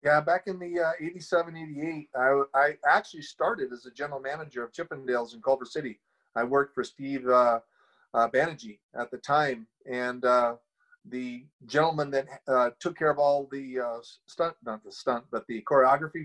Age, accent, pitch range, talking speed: 30-49, American, 130-155 Hz, 180 wpm